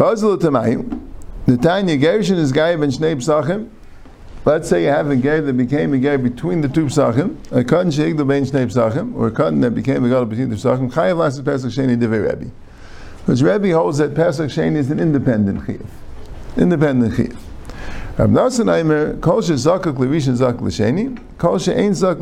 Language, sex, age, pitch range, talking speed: English, male, 50-69, 115-160 Hz, 175 wpm